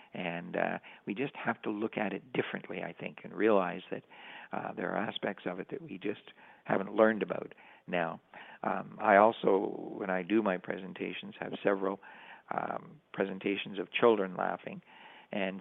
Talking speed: 170 wpm